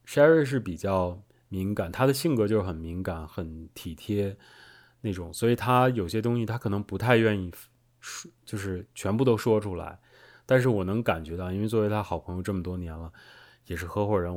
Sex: male